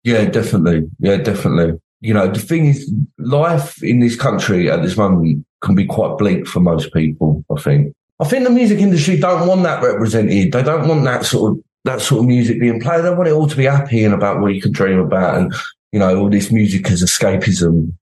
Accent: British